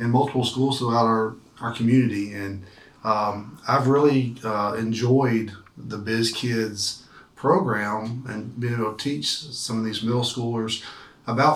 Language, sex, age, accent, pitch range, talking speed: English, male, 40-59, American, 110-130 Hz, 145 wpm